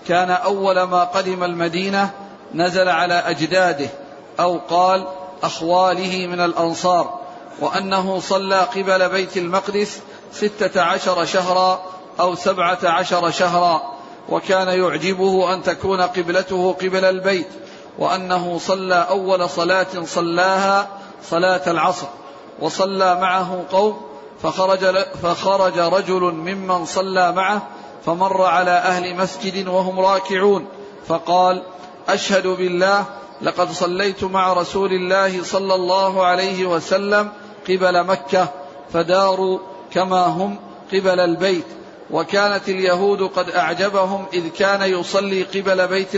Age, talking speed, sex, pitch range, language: 40-59, 105 wpm, male, 180-190 Hz, Arabic